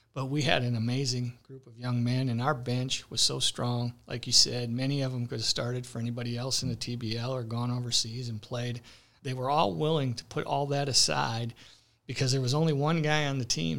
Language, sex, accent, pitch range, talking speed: English, male, American, 115-130 Hz, 230 wpm